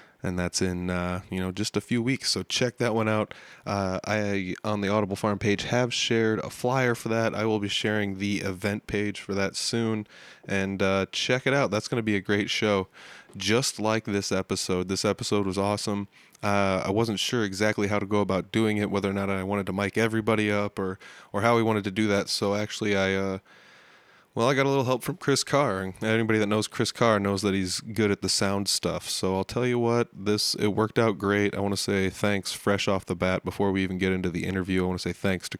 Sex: male